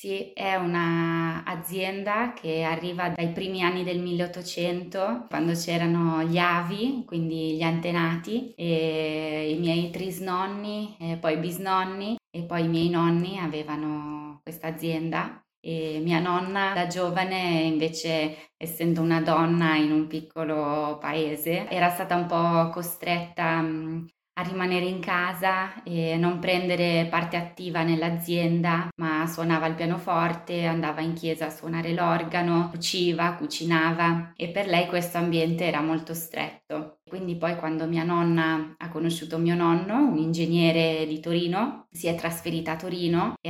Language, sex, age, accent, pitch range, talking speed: Italian, female, 20-39, native, 160-175 Hz, 135 wpm